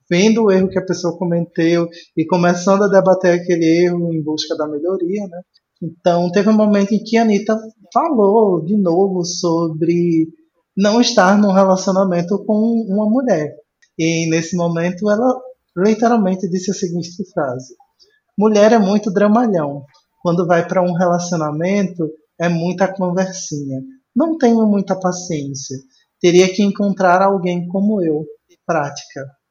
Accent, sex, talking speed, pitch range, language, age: Brazilian, male, 140 wpm, 170-200 Hz, Portuguese, 20-39